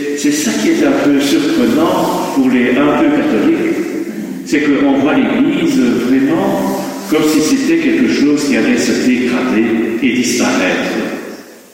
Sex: male